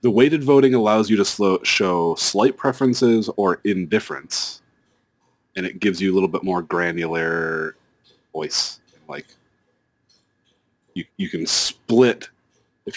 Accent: American